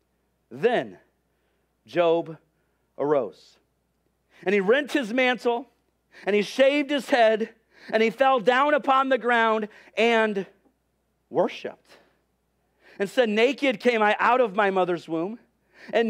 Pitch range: 185-240 Hz